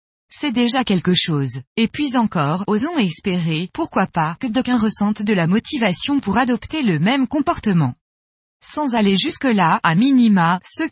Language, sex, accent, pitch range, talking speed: French, female, French, 180-255 Hz, 155 wpm